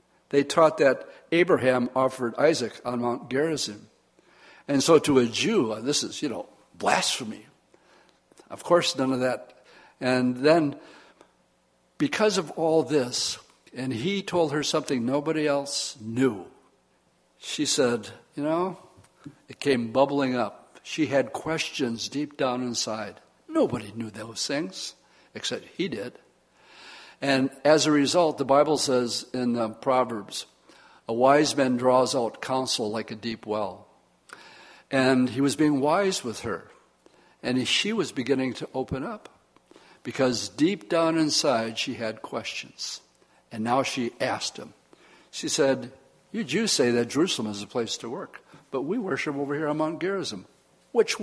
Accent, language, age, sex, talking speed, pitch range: American, English, 60-79, male, 150 wpm, 125-160 Hz